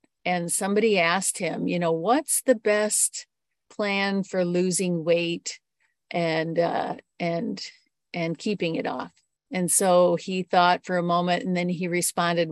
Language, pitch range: English, 175-210 Hz